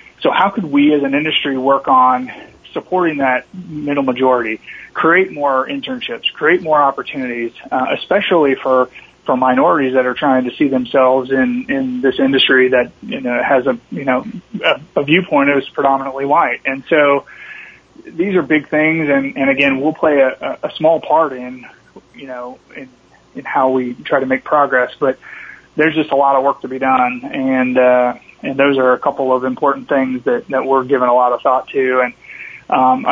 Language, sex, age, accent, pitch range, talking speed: English, male, 30-49, American, 130-145 Hz, 190 wpm